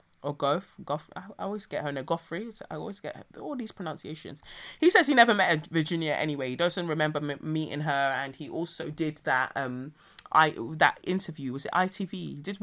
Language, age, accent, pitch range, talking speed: English, 20-39, British, 140-190 Hz, 195 wpm